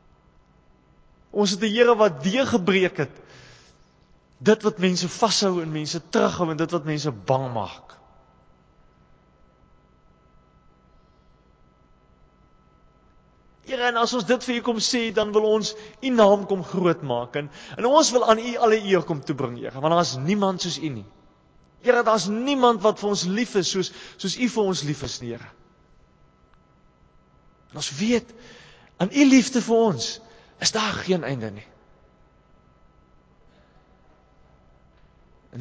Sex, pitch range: male, 135-205 Hz